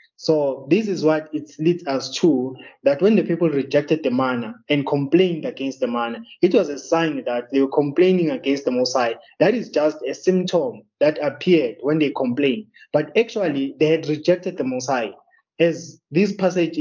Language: English